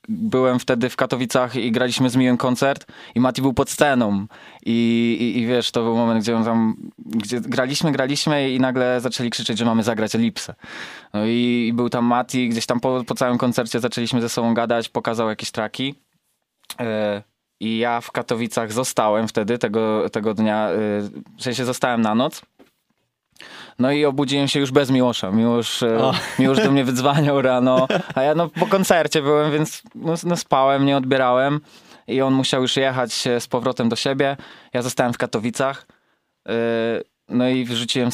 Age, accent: 20-39, native